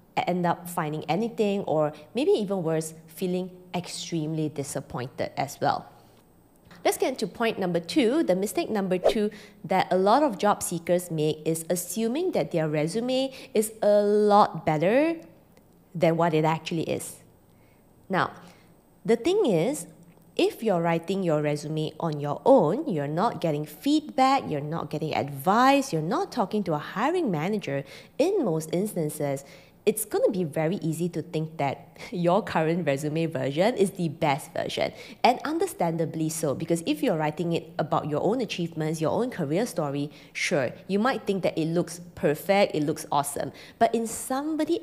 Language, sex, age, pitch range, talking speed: English, female, 20-39, 155-210 Hz, 160 wpm